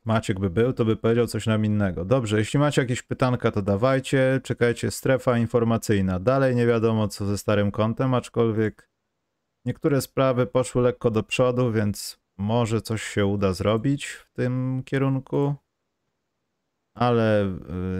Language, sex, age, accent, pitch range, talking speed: Polish, male, 30-49, native, 100-125 Hz, 145 wpm